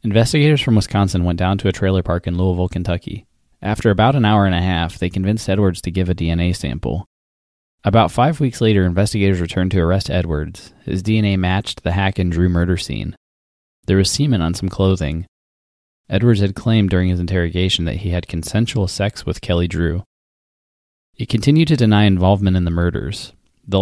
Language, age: English, 20-39